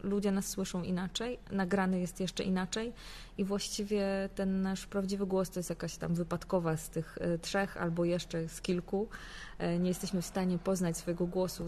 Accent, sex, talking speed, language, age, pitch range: native, female, 170 wpm, Polish, 20-39, 175-205 Hz